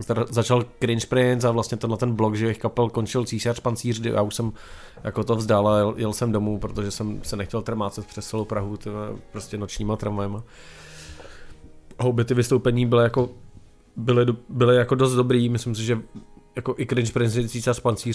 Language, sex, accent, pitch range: Czech, male, native, 110-125 Hz